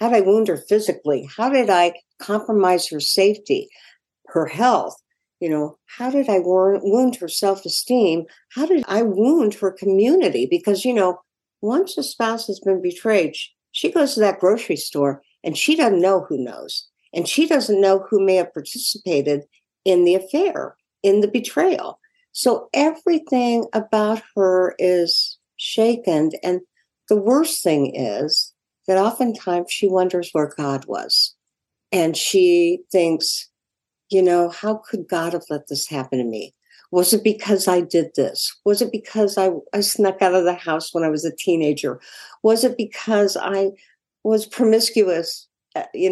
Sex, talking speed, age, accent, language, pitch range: female, 160 wpm, 60-79, American, English, 170-225 Hz